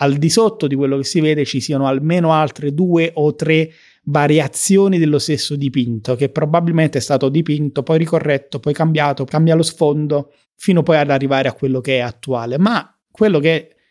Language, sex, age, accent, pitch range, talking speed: Italian, male, 30-49, native, 140-175 Hz, 185 wpm